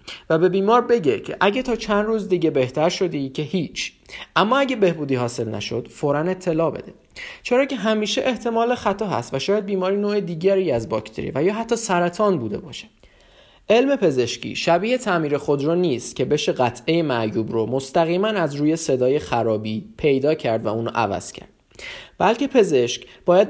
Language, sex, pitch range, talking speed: Persian, male, 125-200 Hz, 170 wpm